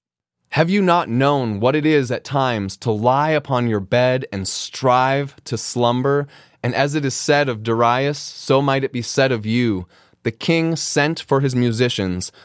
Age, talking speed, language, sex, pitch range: 20-39, 185 wpm, English, male, 125-155 Hz